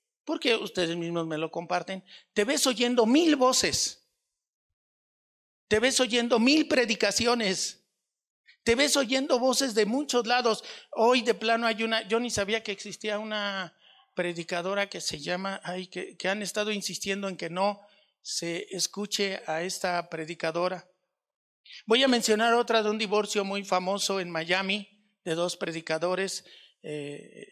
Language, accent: Spanish, Mexican